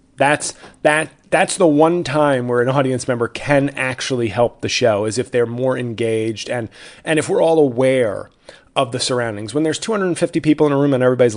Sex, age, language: male, 30-49, English